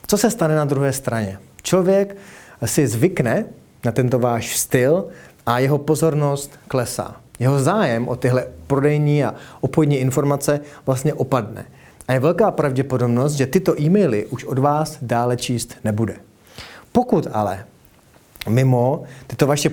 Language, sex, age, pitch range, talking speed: Czech, male, 30-49, 120-155 Hz, 135 wpm